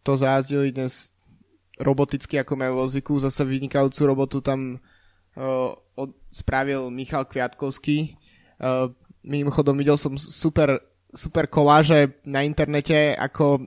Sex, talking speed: male, 120 wpm